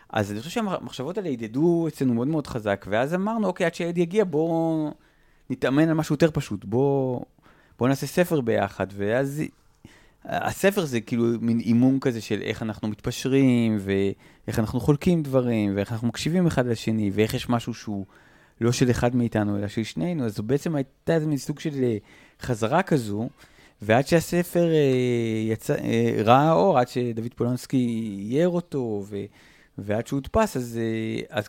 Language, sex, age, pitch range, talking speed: Hebrew, male, 30-49, 105-145 Hz, 160 wpm